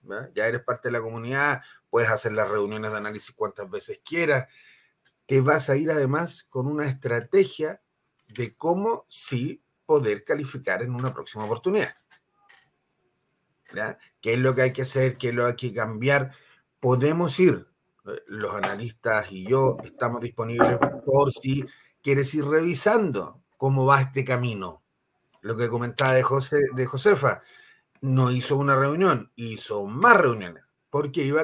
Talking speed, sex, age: 155 wpm, male, 30-49